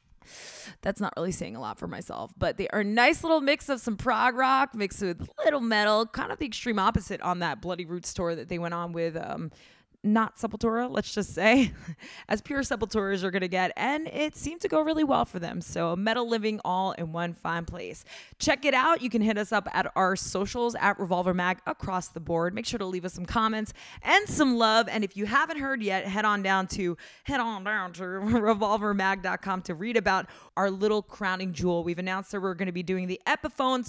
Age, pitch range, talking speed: 20-39, 180-240 Hz, 225 wpm